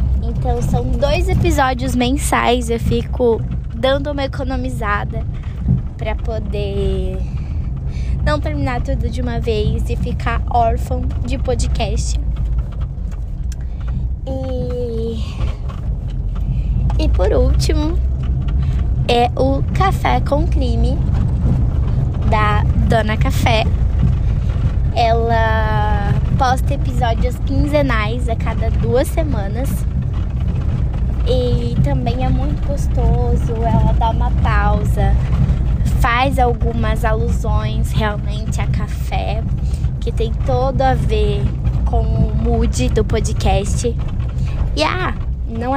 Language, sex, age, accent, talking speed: Portuguese, female, 10-29, Brazilian, 95 wpm